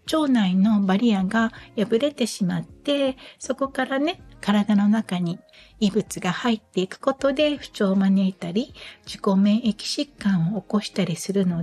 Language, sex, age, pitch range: Japanese, female, 60-79, 195-260 Hz